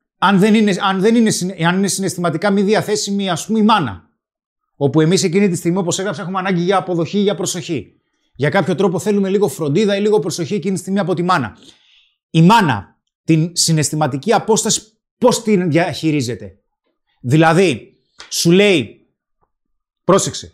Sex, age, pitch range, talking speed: male, 30-49, 160-205 Hz, 145 wpm